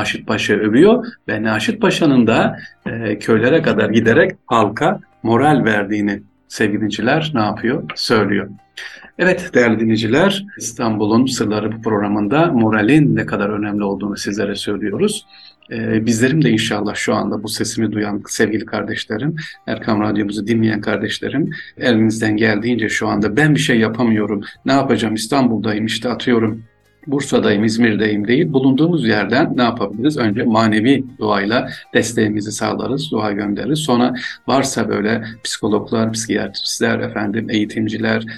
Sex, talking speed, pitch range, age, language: male, 130 wpm, 105-120 Hz, 50-69, Turkish